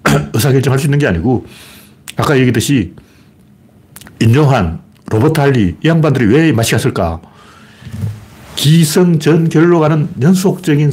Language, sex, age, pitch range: Korean, male, 60-79, 115-165 Hz